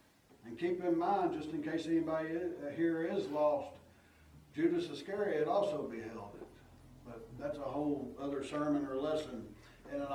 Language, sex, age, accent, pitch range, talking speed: English, male, 60-79, American, 140-200 Hz, 155 wpm